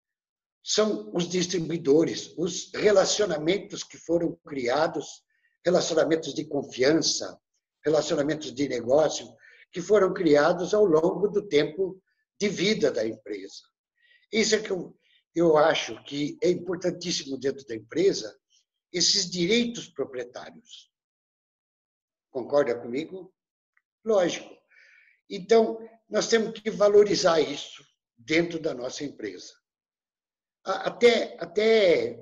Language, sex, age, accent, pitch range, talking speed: Portuguese, male, 60-79, Brazilian, 155-220 Hz, 100 wpm